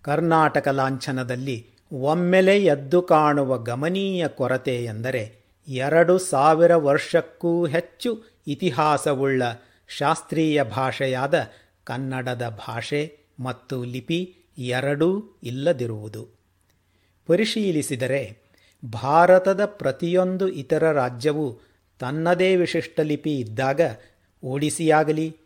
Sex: male